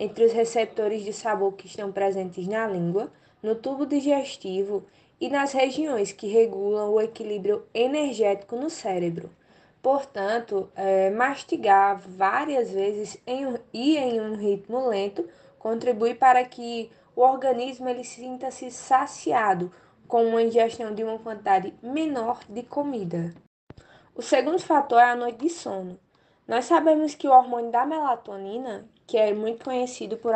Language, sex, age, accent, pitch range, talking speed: Portuguese, female, 20-39, Brazilian, 215-275 Hz, 135 wpm